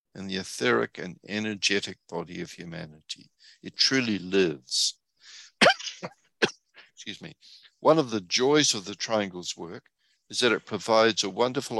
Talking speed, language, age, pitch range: 135 wpm, English, 60-79, 95-115 Hz